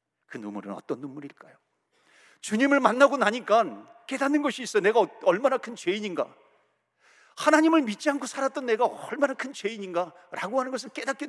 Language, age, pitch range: Korean, 40-59, 180-275 Hz